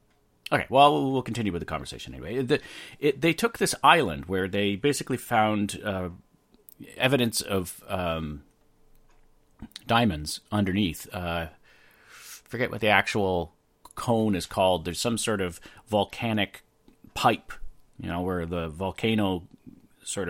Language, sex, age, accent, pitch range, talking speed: English, male, 40-59, American, 85-110 Hz, 130 wpm